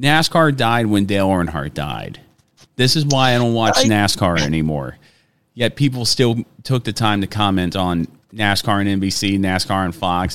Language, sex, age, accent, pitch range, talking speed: English, male, 30-49, American, 100-130 Hz, 170 wpm